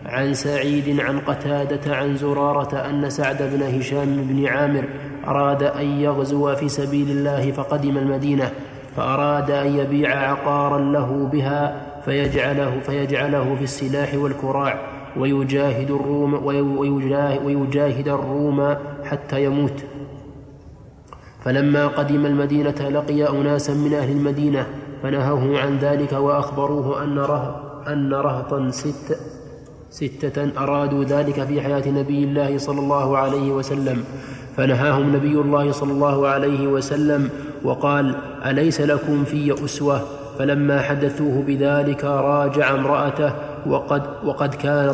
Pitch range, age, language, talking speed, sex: 140-145 Hz, 20-39, Arabic, 110 wpm, male